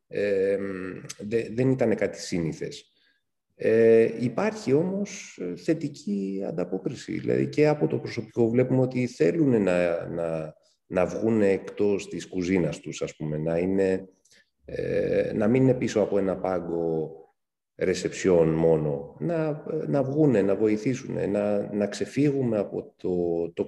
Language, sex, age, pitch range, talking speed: Greek, male, 40-59, 90-125 Hz, 105 wpm